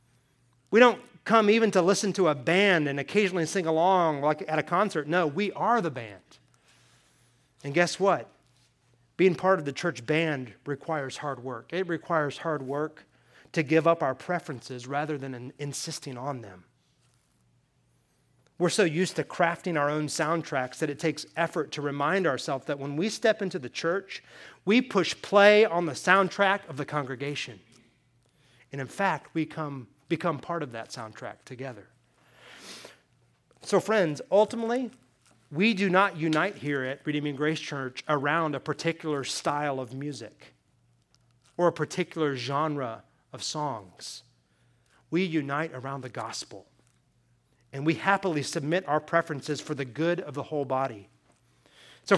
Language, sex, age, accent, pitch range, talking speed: English, male, 30-49, American, 135-185 Hz, 155 wpm